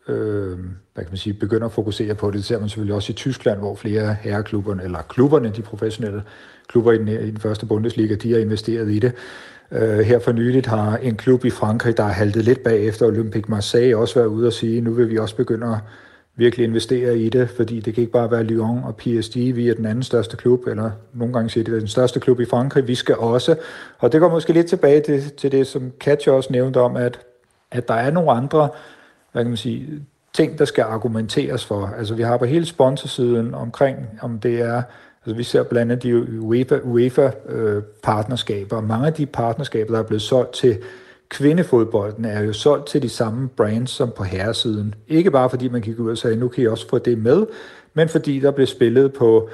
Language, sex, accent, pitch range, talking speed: Danish, male, native, 110-130 Hz, 220 wpm